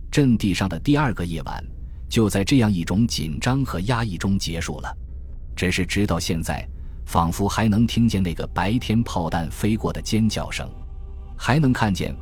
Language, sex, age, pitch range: Chinese, male, 20-39, 80-105 Hz